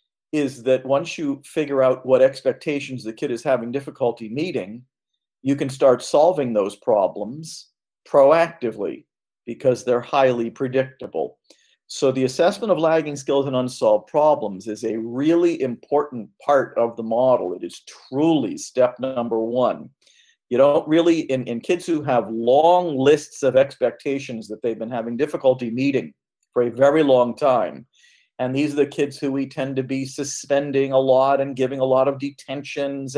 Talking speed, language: 165 wpm, English